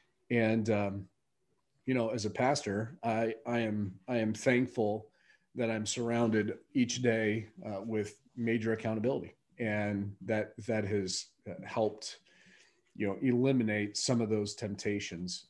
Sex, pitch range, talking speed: male, 105-125 Hz, 130 wpm